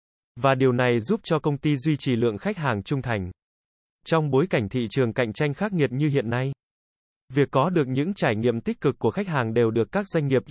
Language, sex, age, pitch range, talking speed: Vietnamese, male, 20-39, 120-160 Hz, 240 wpm